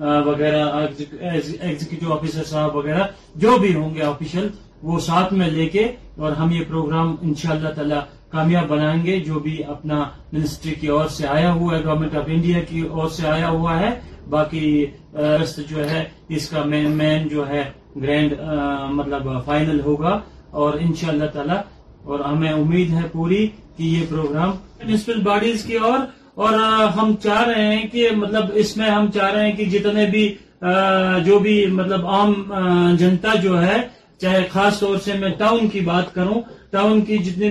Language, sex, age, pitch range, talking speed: Urdu, male, 30-49, 155-210 Hz, 170 wpm